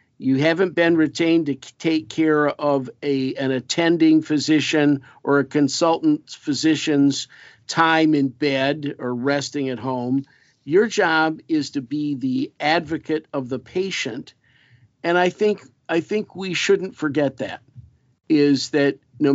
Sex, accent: male, American